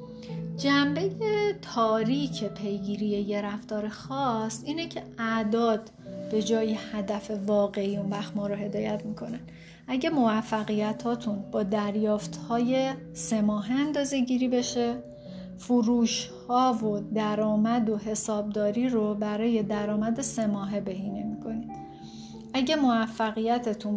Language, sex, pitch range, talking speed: Persian, female, 195-230 Hz, 100 wpm